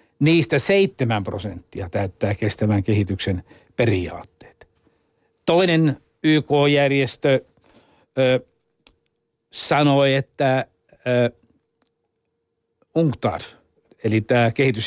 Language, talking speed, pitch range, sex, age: Finnish, 65 wpm, 115-145 Hz, male, 60-79